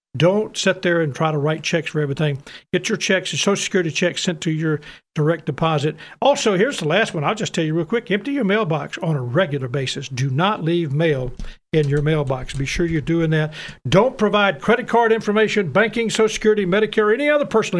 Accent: American